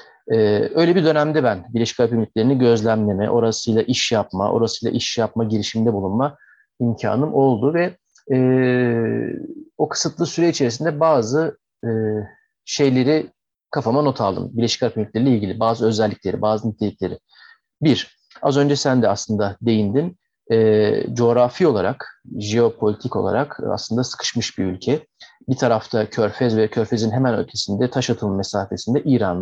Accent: native